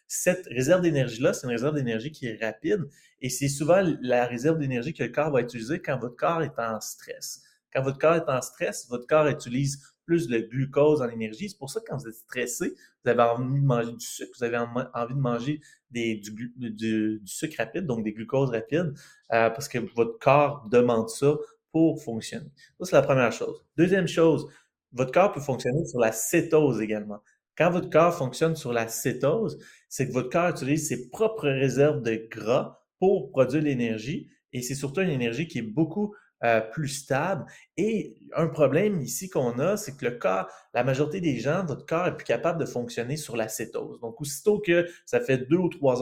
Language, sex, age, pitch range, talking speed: French, male, 30-49, 120-160 Hz, 205 wpm